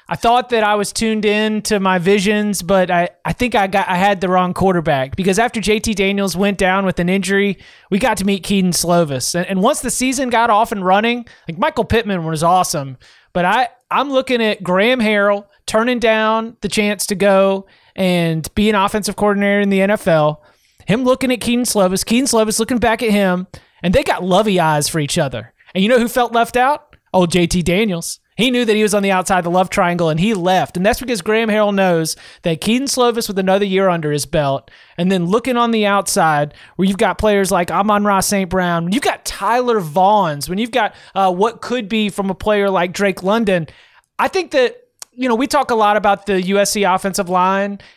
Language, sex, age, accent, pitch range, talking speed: English, male, 30-49, American, 185-220 Hz, 225 wpm